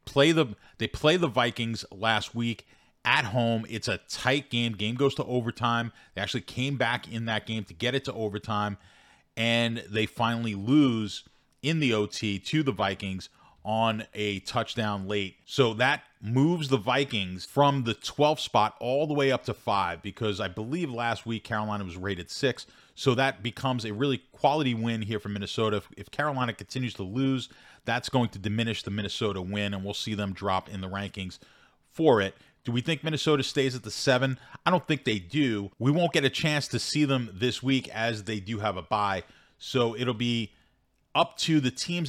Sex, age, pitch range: male, 30-49, 100-130 Hz